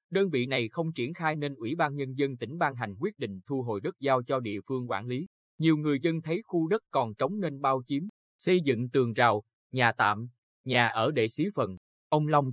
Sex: male